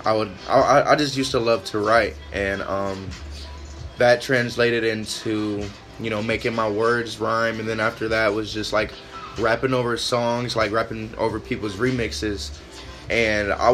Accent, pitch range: American, 105-125 Hz